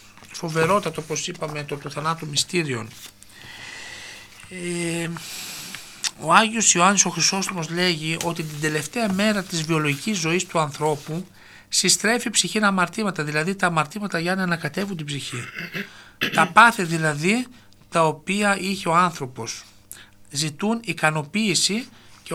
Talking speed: 120 wpm